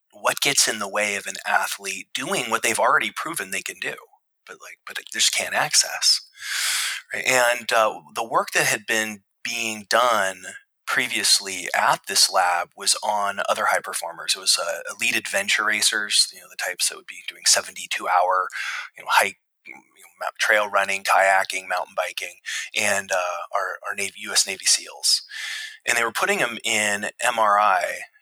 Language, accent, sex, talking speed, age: English, American, male, 180 wpm, 20-39